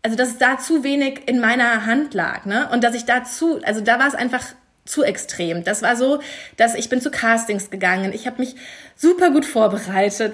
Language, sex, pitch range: German, female, 210-260 Hz